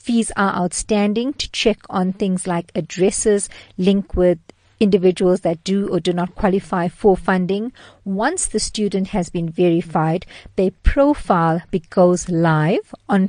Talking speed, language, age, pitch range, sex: 140 wpm, English, 50-69, 180-220 Hz, female